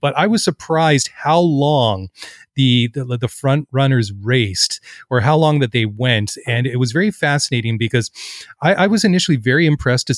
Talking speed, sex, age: 185 wpm, male, 30-49